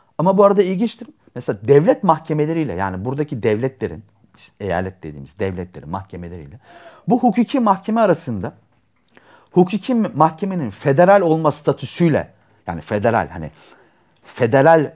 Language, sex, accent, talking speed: Turkish, male, native, 110 wpm